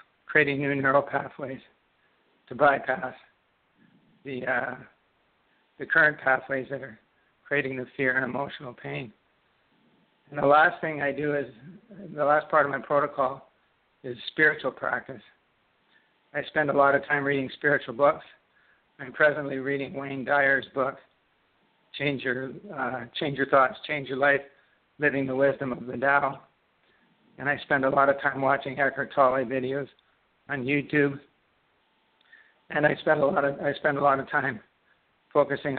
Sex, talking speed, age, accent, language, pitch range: male, 155 wpm, 60-79, American, English, 135-145 Hz